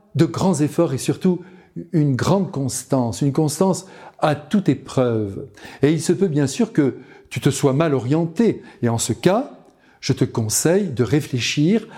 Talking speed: 170 wpm